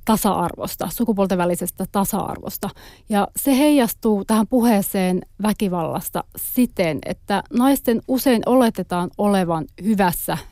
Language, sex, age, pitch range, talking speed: Finnish, female, 30-49, 185-220 Hz, 105 wpm